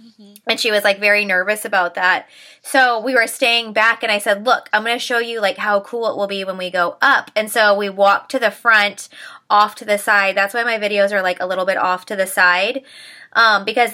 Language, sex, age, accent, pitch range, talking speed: English, female, 20-39, American, 195-230 Hz, 250 wpm